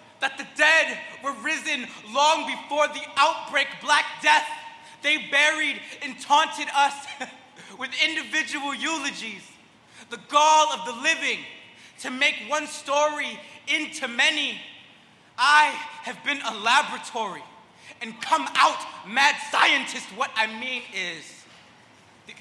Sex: male